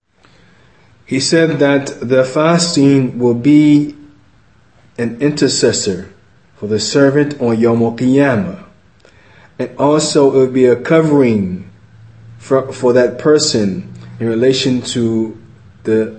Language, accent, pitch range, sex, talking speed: English, American, 115-140 Hz, male, 110 wpm